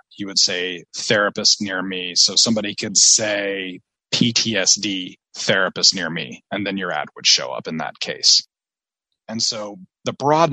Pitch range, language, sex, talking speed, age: 95-115 Hz, English, male, 160 wpm, 20-39